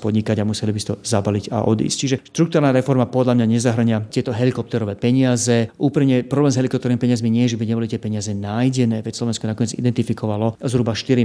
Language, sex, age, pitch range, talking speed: Slovak, male, 30-49, 110-130 Hz, 195 wpm